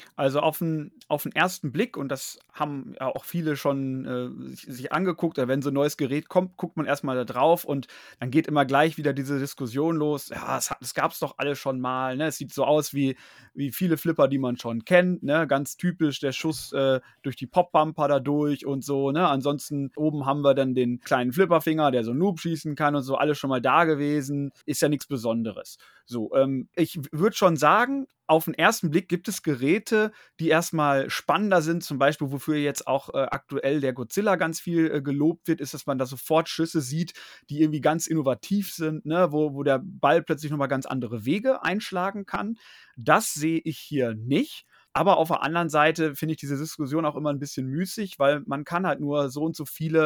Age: 30-49